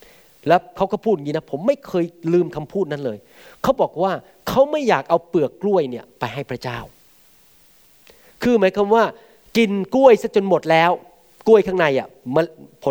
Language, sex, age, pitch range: Thai, male, 30-49, 155-215 Hz